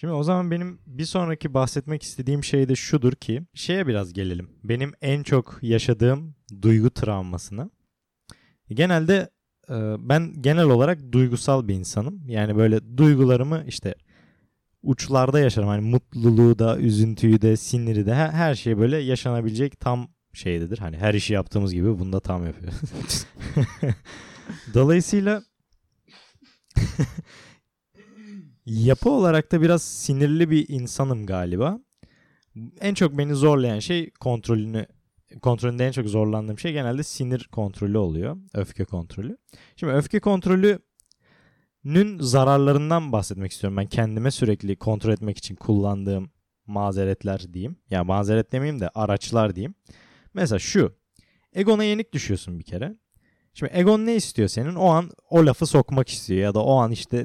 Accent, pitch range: native, 105-150 Hz